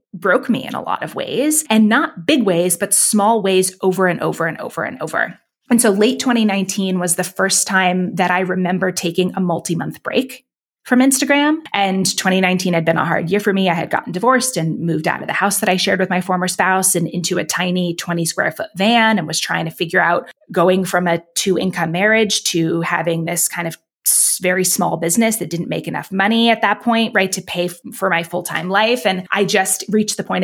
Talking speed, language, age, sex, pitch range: 230 wpm, English, 20-39, female, 175-210 Hz